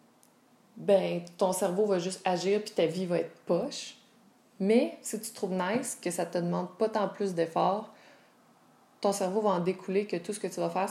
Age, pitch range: 20-39, 185-230 Hz